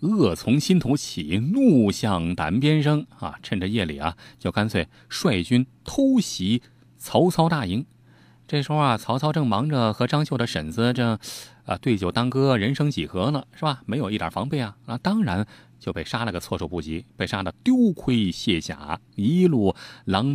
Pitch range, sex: 100-145 Hz, male